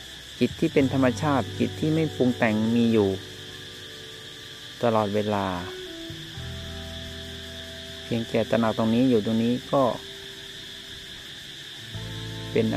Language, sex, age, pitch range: Thai, male, 20-39, 95-125 Hz